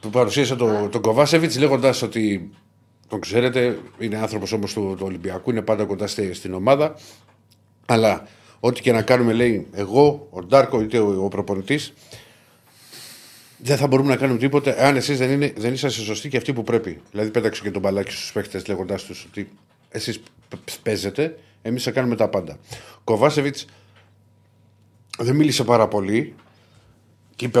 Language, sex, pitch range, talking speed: Greek, male, 100-120 Hz, 150 wpm